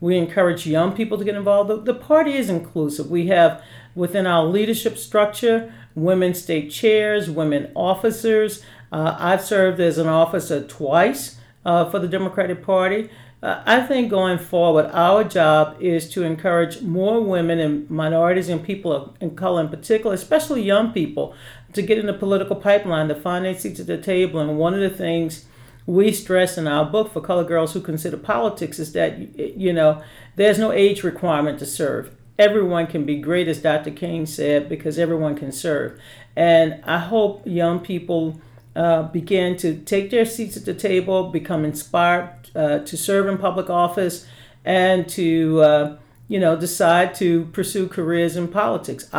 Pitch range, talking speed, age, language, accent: 160-195 Hz, 175 wpm, 50-69, English, American